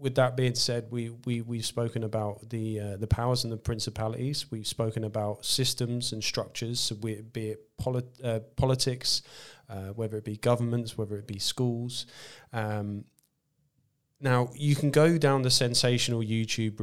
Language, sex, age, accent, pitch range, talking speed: English, male, 20-39, British, 110-125 Hz, 170 wpm